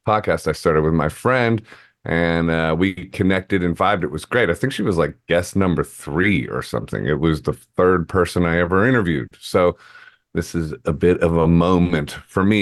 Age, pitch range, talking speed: 30-49, 85-125 Hz, 205 wpm